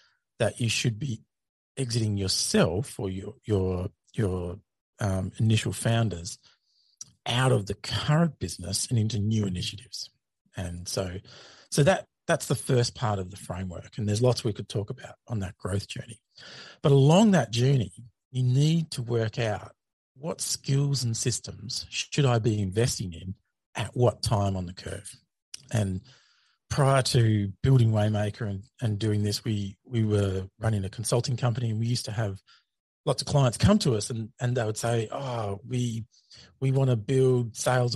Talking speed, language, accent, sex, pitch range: 170 wpm, English, Australian, male, 100-130 Hz